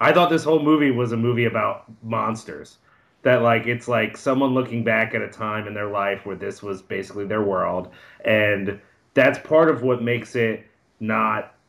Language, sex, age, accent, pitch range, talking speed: English, male, 30-49, American, 110-140 Hz, 190 wpm